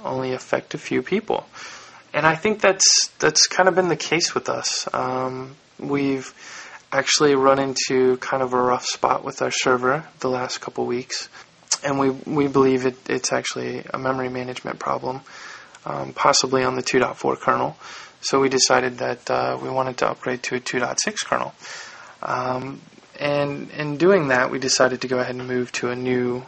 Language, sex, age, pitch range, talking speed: English, male, 20-39, 125-145 Hz, 180 wpm